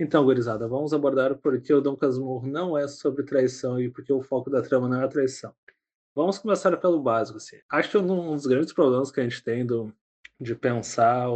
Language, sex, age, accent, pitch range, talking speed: Portuguese, male, 20-39, Brazilian, 130-155 Hz, 220 wpm